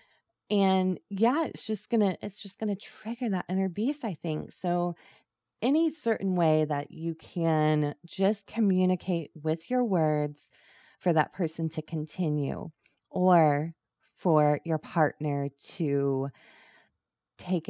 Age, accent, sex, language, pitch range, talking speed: 20-39, American, female, English, 155-210 Hz, 130 wpm